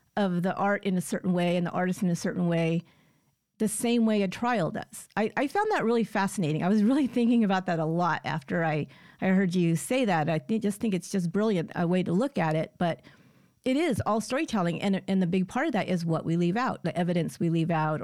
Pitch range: 170-205 Hz